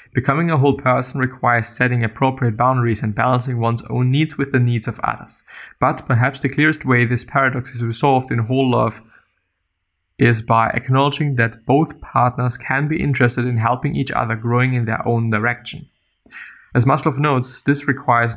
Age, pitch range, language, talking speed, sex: 20-39, 115-135 Hz, English, 175 wpm, male